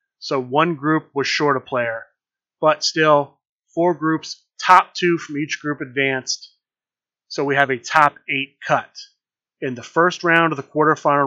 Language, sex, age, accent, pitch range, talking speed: English, male, 30-49, American, 130-160 Hz, 165 wpm